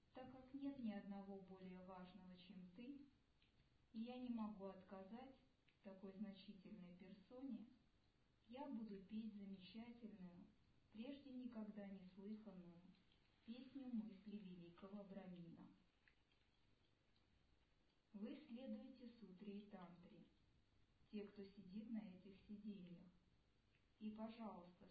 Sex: male